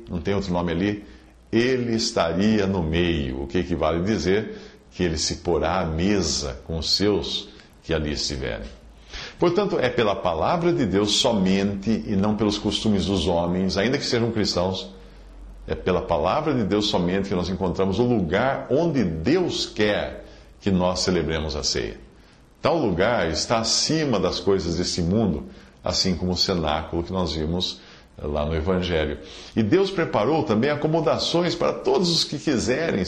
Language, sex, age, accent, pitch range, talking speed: English, male, 50-69, Brazilian, 85-110 Hz, 165 wpm